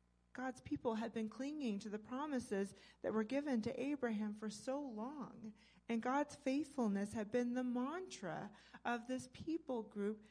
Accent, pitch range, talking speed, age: American, 180-225 Hz, 155 wpm, 40-59